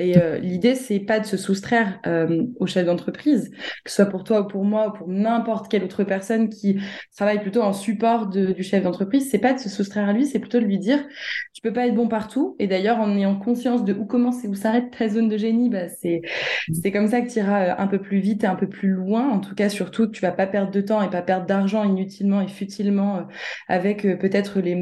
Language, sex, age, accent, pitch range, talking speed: French, female, 20-39, French, 195-235 Hz, 260 wpm